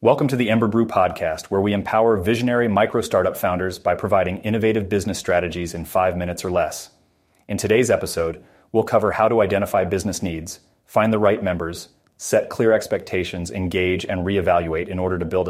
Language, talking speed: English, 180 wpm